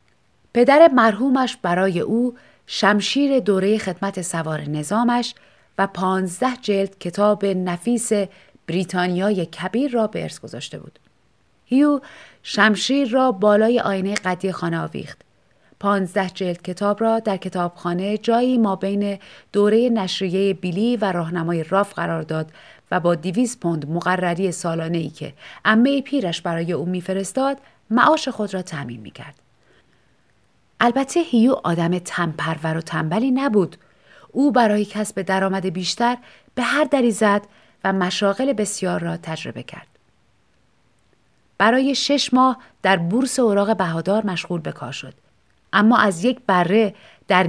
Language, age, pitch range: Persian, 30-49, 180-240 Hz